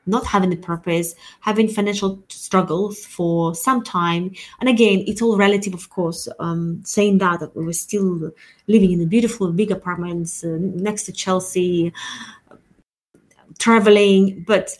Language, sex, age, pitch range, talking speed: English, female, 20-39, 180-225 Hz, 150 wpm